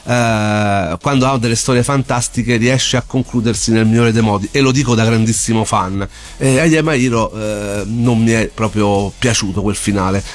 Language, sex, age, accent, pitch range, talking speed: Italian, male, 40-59, native, 105-130 Hz, 175 wpm